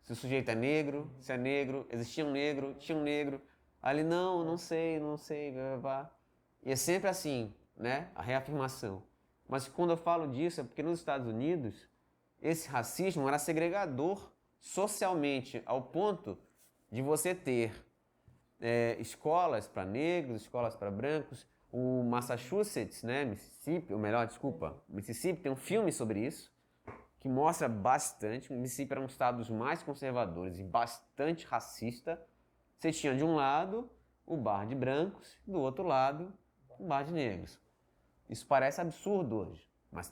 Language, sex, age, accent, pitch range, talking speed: Portuguese, male, 20-39, Brazilian, 115-160 Hz, 155 wpm